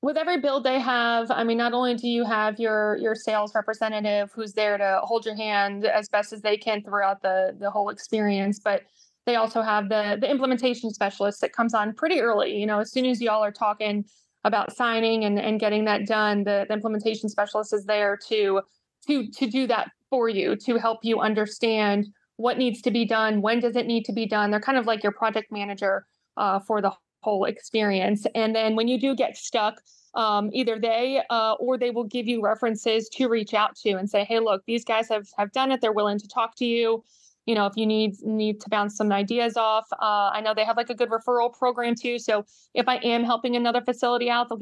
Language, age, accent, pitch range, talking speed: English, 20-39, American, 210-240 Hz, 230 wpm